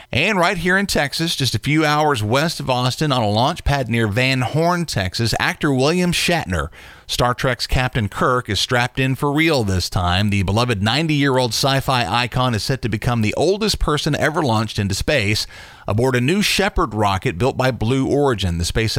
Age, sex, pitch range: 40-59, male, 100-135 Hz